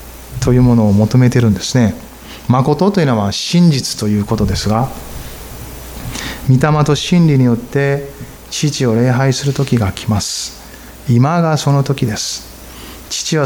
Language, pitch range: Japanese, 110-155 Hz